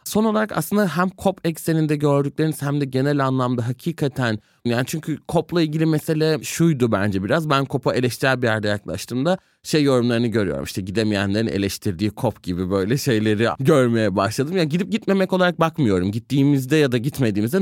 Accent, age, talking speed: native, 30-49, 165 wpm